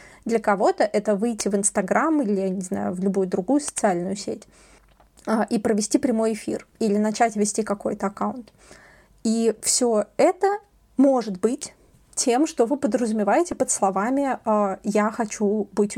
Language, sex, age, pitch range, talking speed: Russian, female, 20-39, 210-260 Hz, 145 wpm